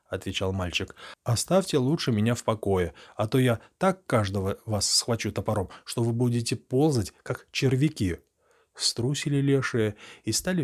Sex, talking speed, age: male, 140 wpm, 30-49